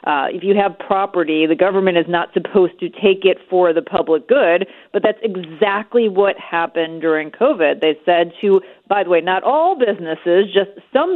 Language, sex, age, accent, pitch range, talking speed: English, female, 40-59, American, 165-210 Hz, 190 wpm